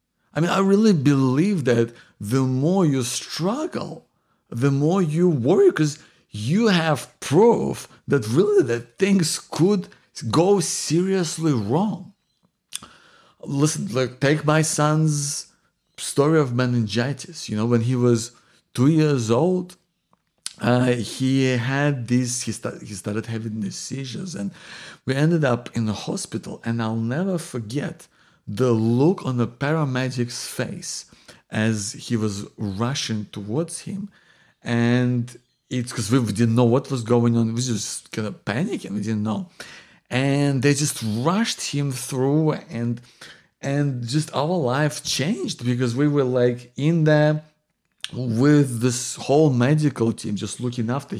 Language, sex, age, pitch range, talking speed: English, male, 50-69, 120-155 Hz, 140 wpm